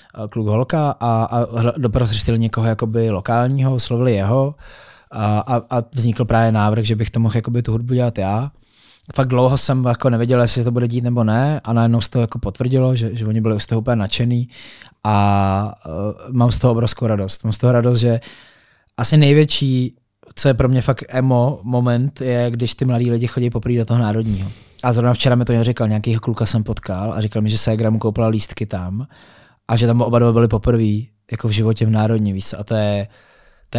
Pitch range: 110-125 Hz